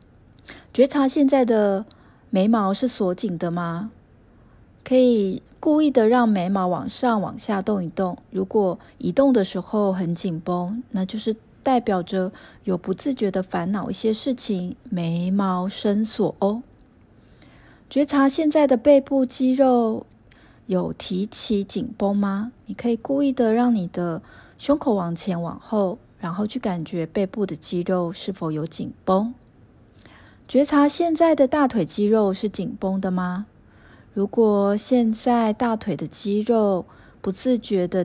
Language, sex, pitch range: Chinese, female, 185-235 Hz